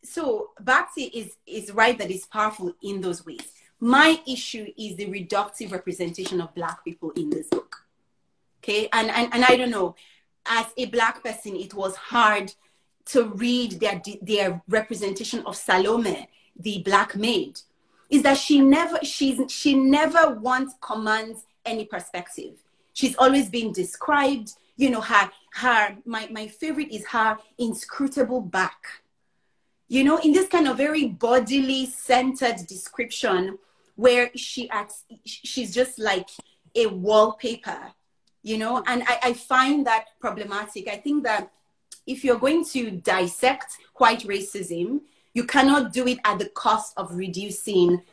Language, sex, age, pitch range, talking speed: English, female, 30-49, 200-260 Hz, 145 wpm